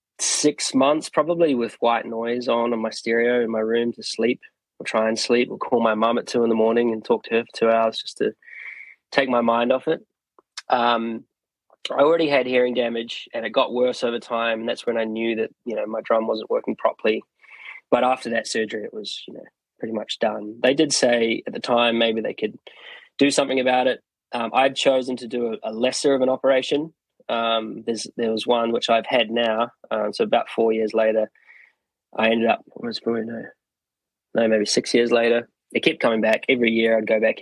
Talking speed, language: 225 wpm, English